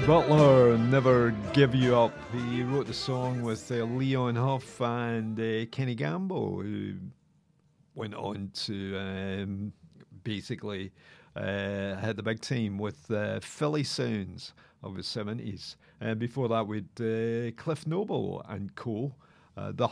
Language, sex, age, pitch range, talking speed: English, male, 50-69, 105-130 Hz, 135 wpm